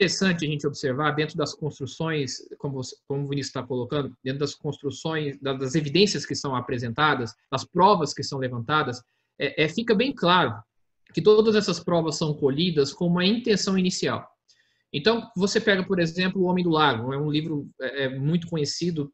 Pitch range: 145-205 Hz